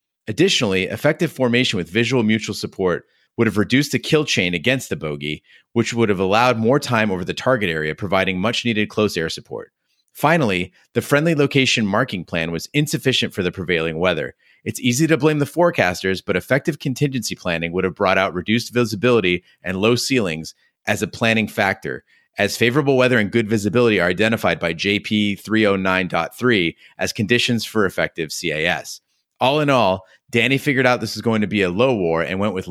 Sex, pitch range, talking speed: male, 95-130 Hz, 180 wpm